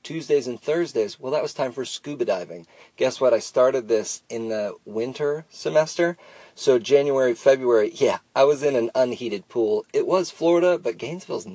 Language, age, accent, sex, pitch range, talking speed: English, 40-59, American, male, 125-190 Hz, 175 wpm